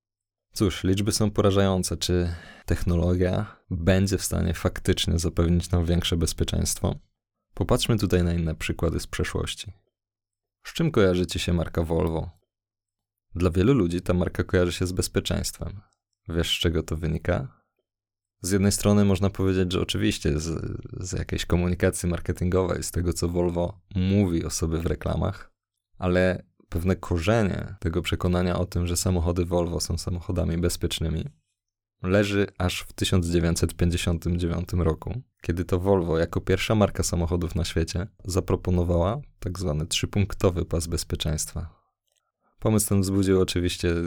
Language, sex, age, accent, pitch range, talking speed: Polish, male, 20-39, native, 85-100 Hz, 135 wpm